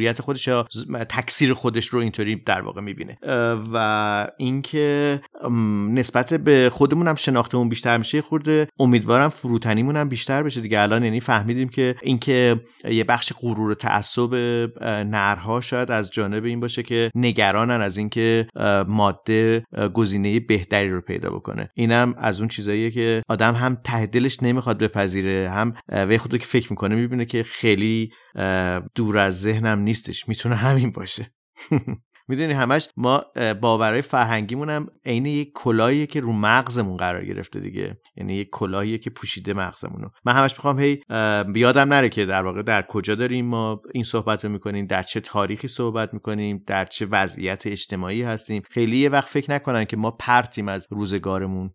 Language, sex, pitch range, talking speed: Persian, male, 105-125 Hz, 160 wpm